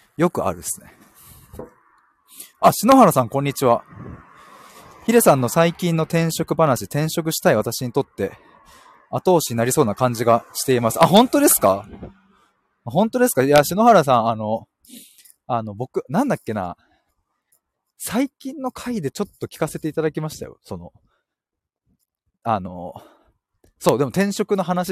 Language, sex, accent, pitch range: Japanese, male, native, 120-200 Hz